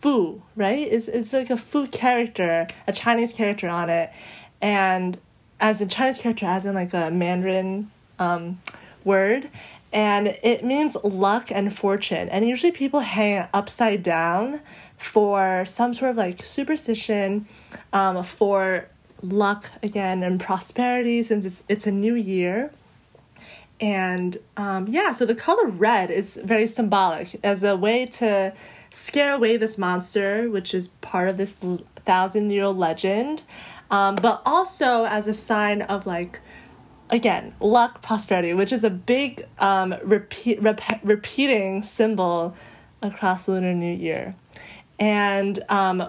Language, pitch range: English, 190-235 Hz